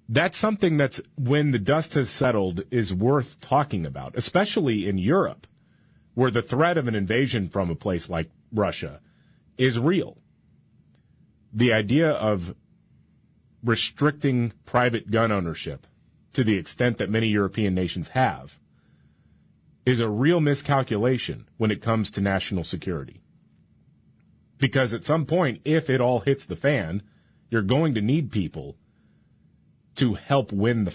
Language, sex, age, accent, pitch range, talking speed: English, male, 30-49, American, 100-130 Hz, 140 wpm